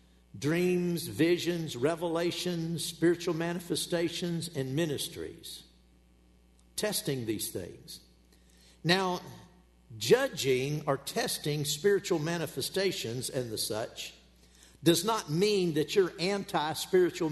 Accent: American